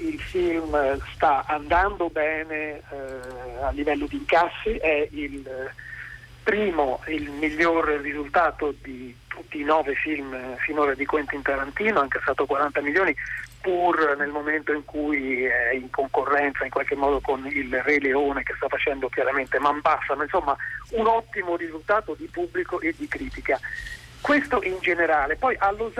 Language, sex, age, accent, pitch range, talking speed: Italian, male, 40-59, native, 140-170 Hz, 155 wpm